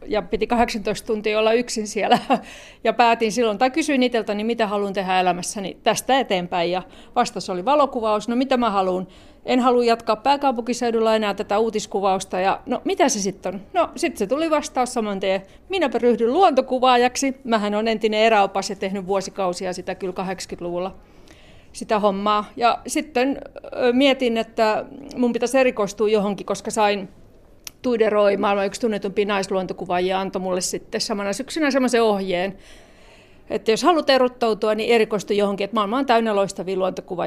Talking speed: 155 wpm